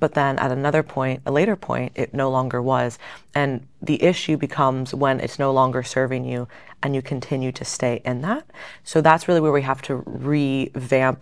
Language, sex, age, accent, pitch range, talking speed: English, female, 20-39, American, 125-150 Hz, 200 wpm